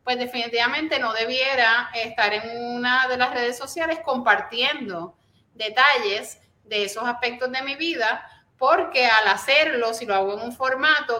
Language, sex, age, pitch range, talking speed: Spanish, female, 30-49, 225-270 Hz, 150 wpm